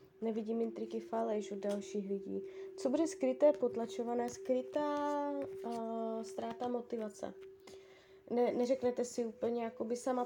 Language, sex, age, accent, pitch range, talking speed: Czech, female, 20-39, native, 200-255 Hz, 110 wpm